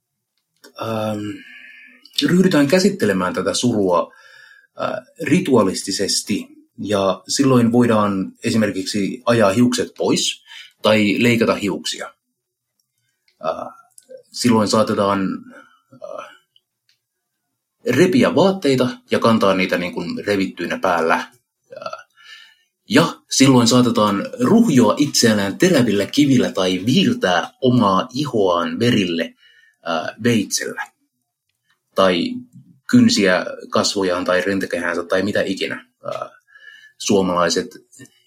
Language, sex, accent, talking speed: Finnish, male, native, 85 wpm